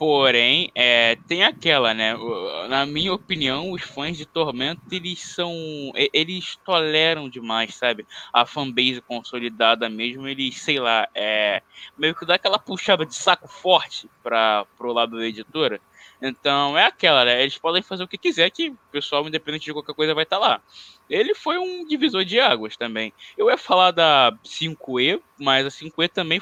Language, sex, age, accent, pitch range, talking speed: Portuguese, male, 10-29, Brazilian, 120-165 Hz, 175 wpm